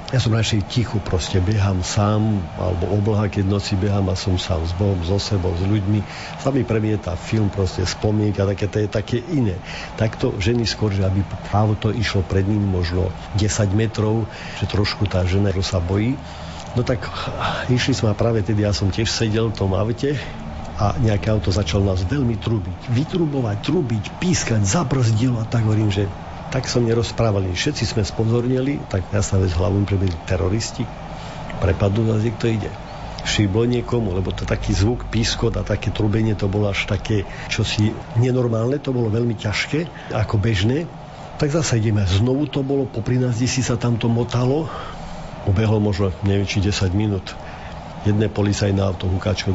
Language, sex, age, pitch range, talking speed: Slovak, male, 50-69, 100-120 Hz, 175 wpm